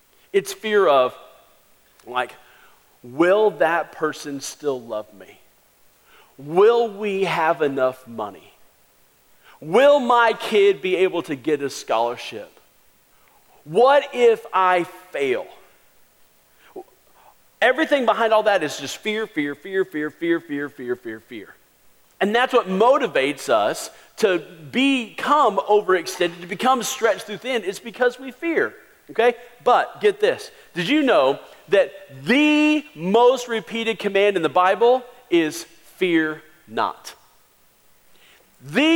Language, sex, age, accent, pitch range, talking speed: English, male, 40-59, American, 155-245 Hz, 125 wpm